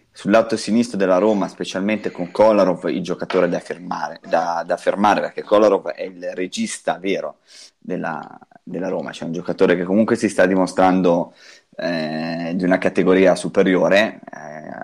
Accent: native